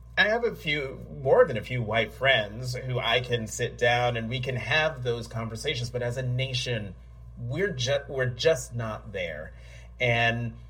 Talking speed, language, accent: 180 wpm, English, American